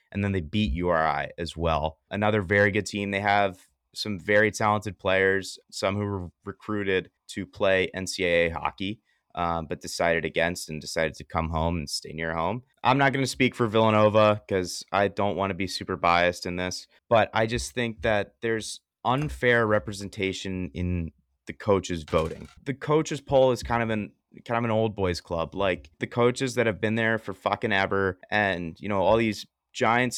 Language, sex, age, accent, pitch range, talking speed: English, male, 30-49, American, 90-110 Hz, 185 wpm